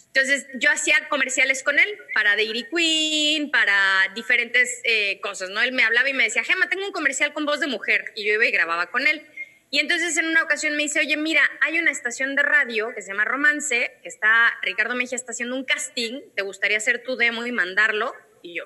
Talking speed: 225 wpm